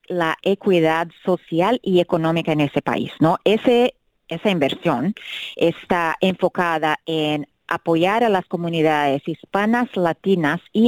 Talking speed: 120 wpm